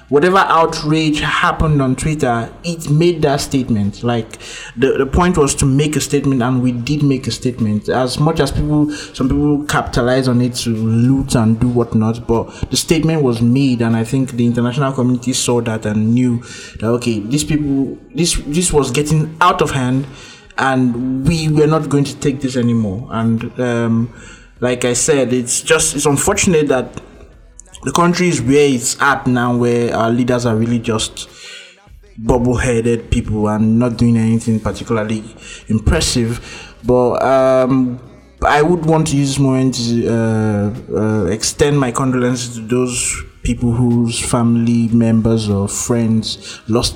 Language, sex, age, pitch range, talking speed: English, male, 20-39, 115-145 Hz, 165 wpm